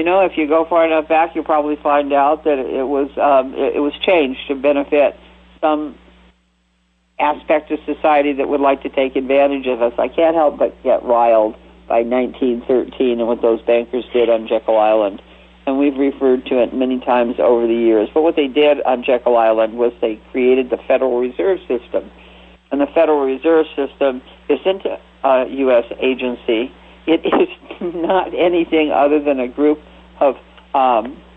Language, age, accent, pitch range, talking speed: English, 50-69, American, 120-150 Hz, 175 wpm